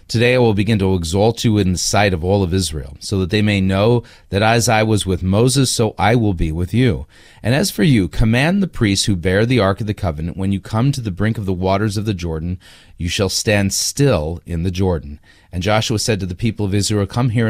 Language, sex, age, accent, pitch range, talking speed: English, male, 30-49, American, 95-115 Hz, 255 wpm